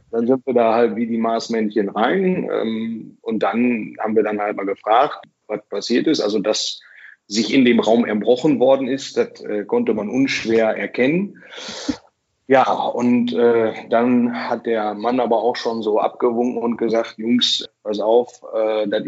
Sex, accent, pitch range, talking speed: male, German, 115-140 Hz, 175 wpm